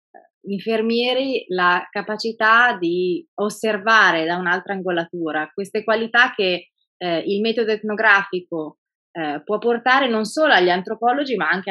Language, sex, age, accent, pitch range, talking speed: Italian, female, 20-39, native, 175-225 Hz, 125 wpm